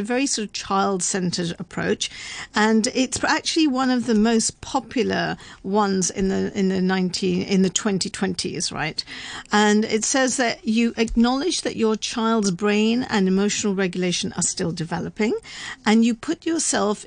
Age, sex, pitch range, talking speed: 50-69, female, 195-245 Hz, 155 wpm